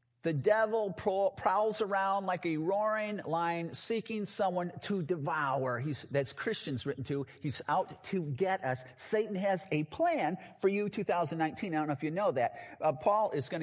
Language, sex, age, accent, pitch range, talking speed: English, male, 50-69, American, 150-210 Hz, 175 wpm